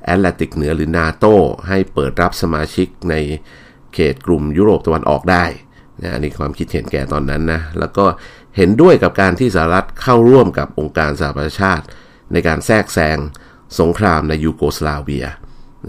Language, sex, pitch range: Thai, male, 75-95 Hz